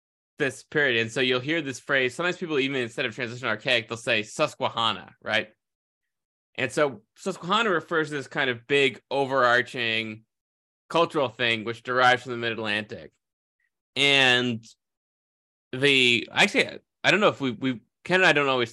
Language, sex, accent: English, male, American